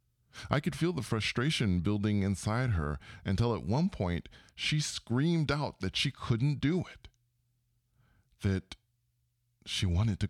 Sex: male